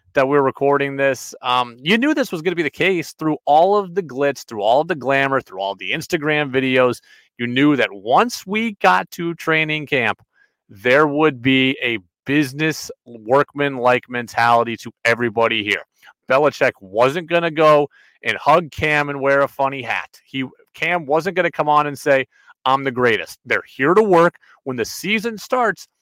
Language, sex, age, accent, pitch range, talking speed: English, male, 30-49, American, 120-160 Hz, 190 wpm